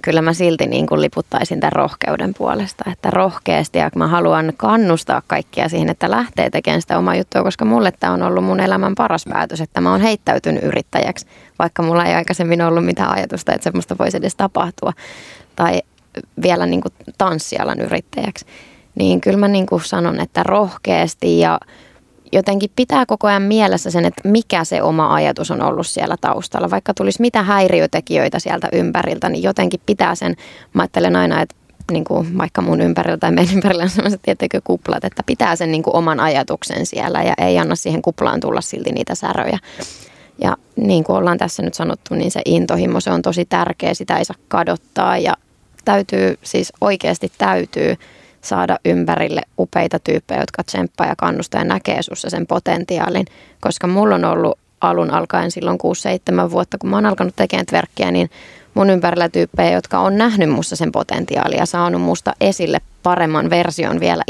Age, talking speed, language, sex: 20-39, 175 wpm, Finnish, female